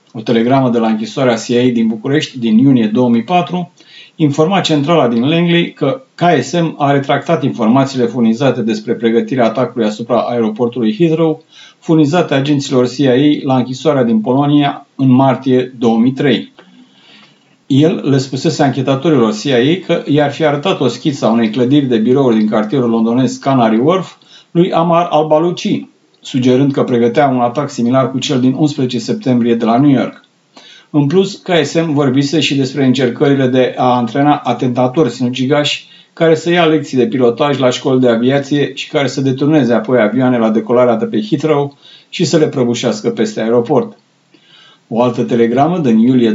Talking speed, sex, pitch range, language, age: 155 wpm, male, 120-155 Hz, Romanian, 50-69